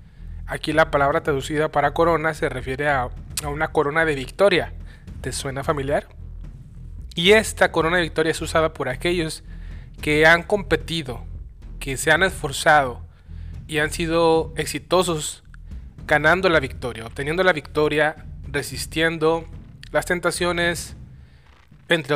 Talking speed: 125 wpm